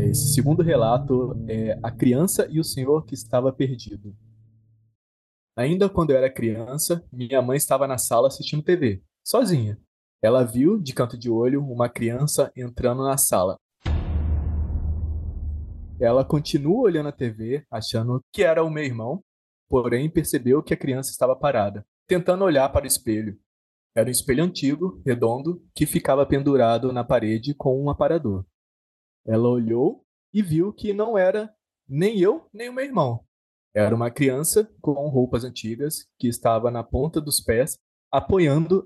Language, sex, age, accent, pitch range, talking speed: Portuguese, male, 20-39, Brazilian, 115-160 Hz, 150 wpm